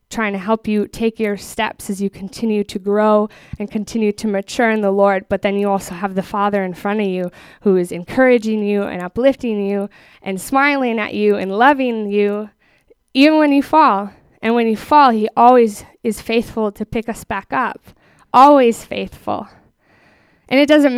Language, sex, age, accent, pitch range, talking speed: English, female, 10-29, American, 200-235 Hz, 190 wpm